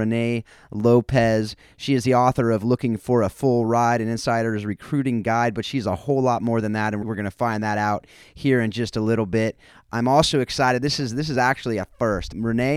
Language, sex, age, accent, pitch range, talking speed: English, male, 30-49, American, 105-125 Hz, 225 wpm